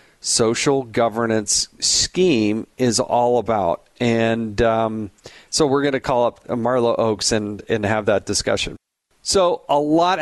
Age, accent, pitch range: 40-59, American, 115-145 Hz